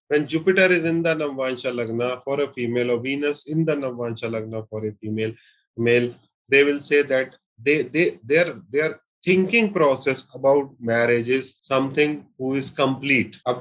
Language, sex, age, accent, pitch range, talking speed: Hindi, male, 30-49, native, 120-155 Hz, 150 wpm